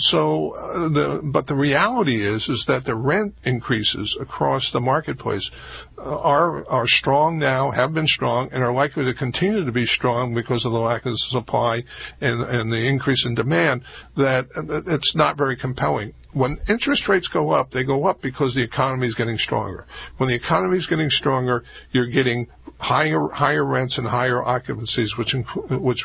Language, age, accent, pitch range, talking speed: English, 50-69, American, 120-140 Hz, 175 wpm